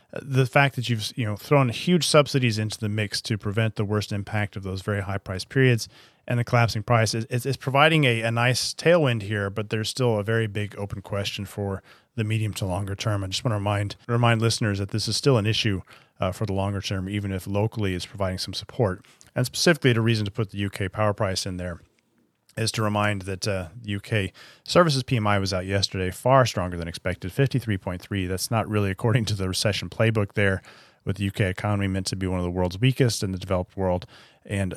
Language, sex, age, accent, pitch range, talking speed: English, male, 30-49, American, 95-115 Hz, 225 wpm